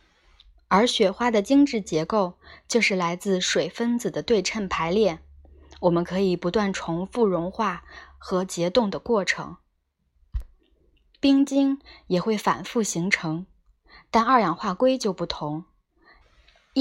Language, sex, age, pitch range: Chinese, female, 20-39, 175-225 Hz